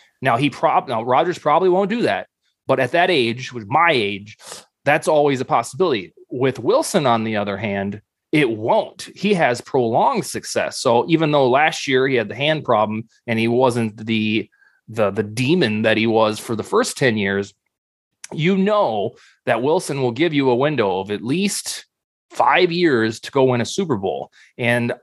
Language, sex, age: English, male, 20-39